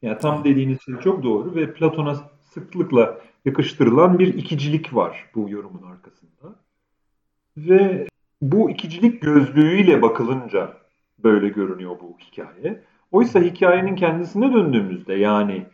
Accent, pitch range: native, 115-160 Hz